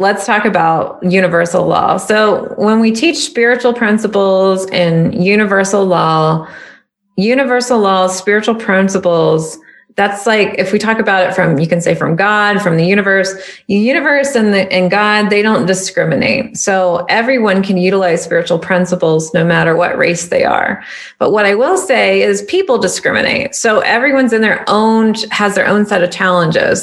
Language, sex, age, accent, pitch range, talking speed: English, female, 30-49, American, 175-205 Hz, 165 wpm